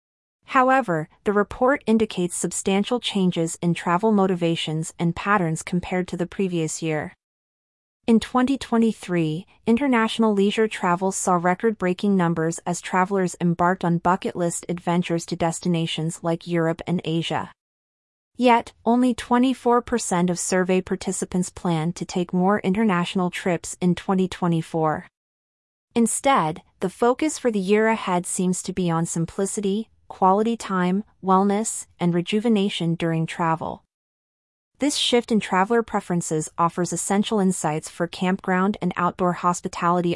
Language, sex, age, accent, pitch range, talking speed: English, female, 30-49, American, 170-210 Hz, 125 wpm